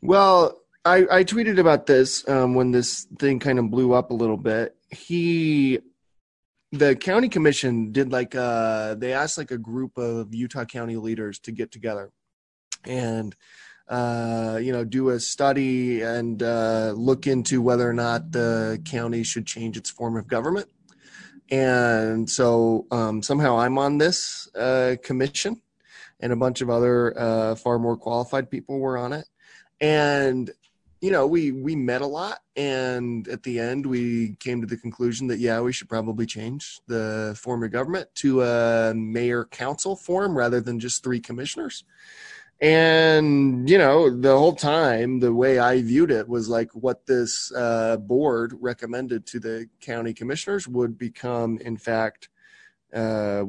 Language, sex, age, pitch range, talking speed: English, male, 20-39, 115-135 Hz, 160 wpm